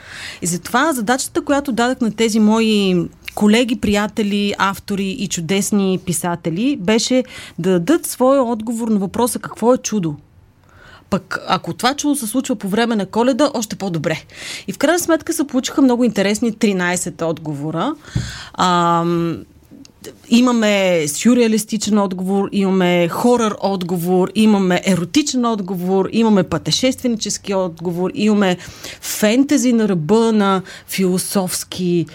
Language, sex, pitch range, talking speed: Bulgarian, female, 185-245 Hz, 125 wpm